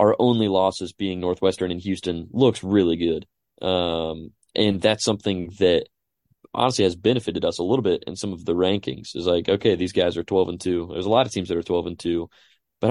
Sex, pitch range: male, 90-115 Hz